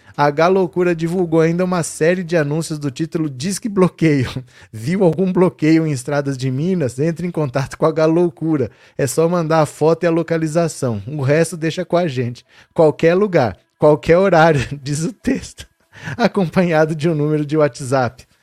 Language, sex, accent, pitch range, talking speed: Portuguese, male, Brazilian, 130-165 Hz, 165 wpm